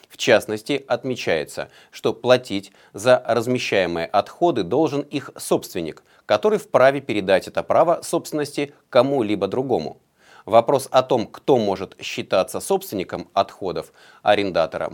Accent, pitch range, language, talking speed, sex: native, 105-150 Hz, Russian, 115 wpm, male